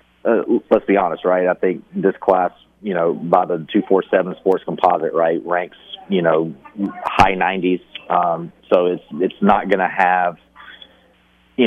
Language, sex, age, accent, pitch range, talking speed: English, male, 40-59, American, 85-100 Hz, 165 wpm